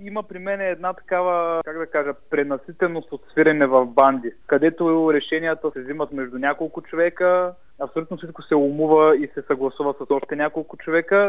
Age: 20-39